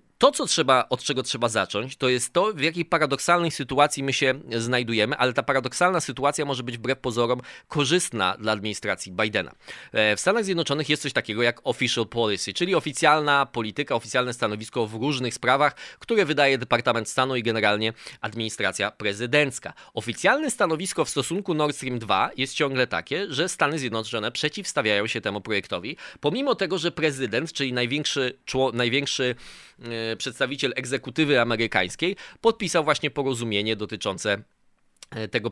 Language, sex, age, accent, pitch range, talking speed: Polish, male, 20-39, native, 115-150 Hz, 140 wpm